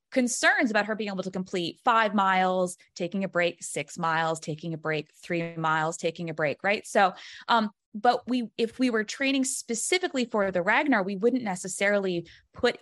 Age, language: 20-39, English